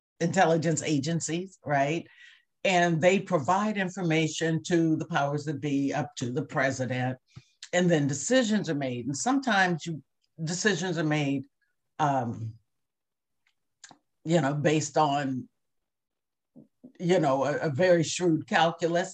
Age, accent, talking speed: 50-69, American, 120 wpm